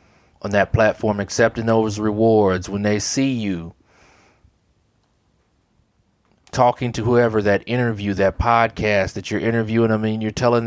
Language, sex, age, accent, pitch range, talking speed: English, male, 30-49, American, 95-120 Hz, 135 wpm